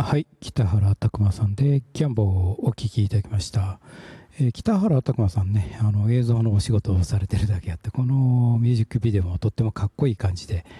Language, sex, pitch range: Japanese, male, 100-130 Hz